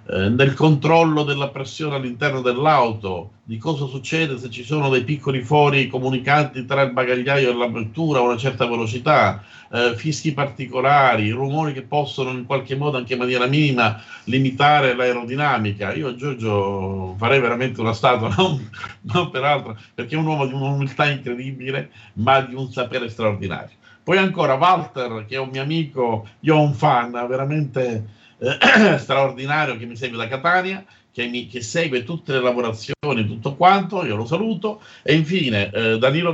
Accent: native